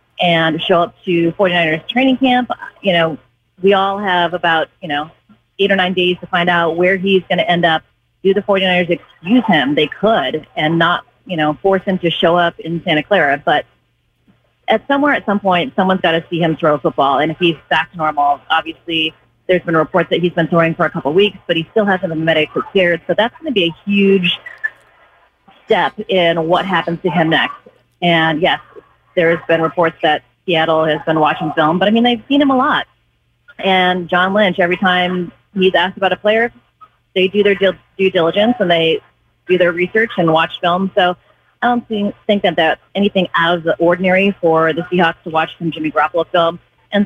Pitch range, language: 165-195 Hz, English